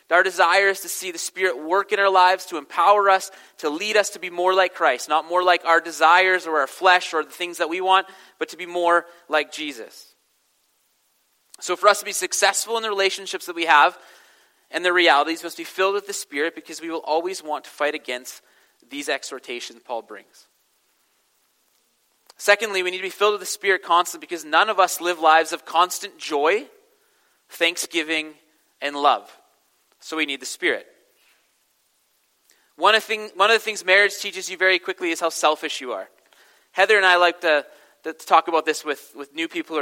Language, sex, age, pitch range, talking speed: English, male, 30-49, 155-190 Hz, 205 wpm